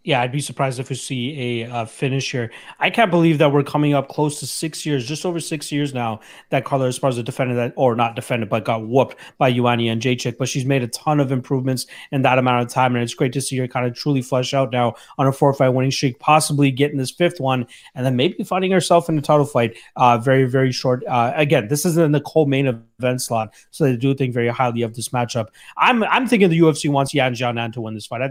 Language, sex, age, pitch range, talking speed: English, male, 30-49, 125-150 Hz, 255 wpm